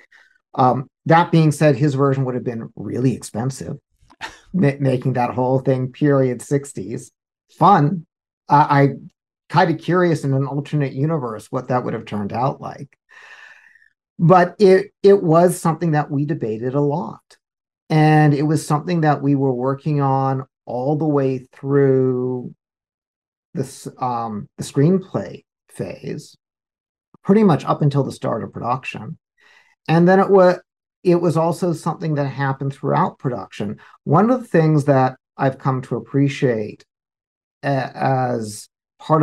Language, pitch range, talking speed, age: English, 130-165 Hz, 145 wpm, 50-69